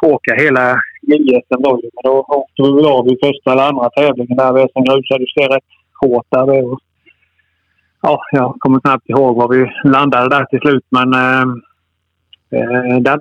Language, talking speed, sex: Swedish, 155 wpm, male